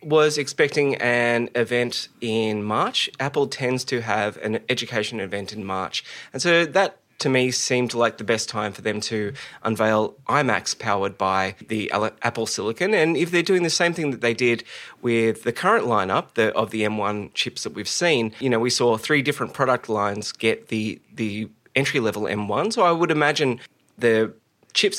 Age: 20-39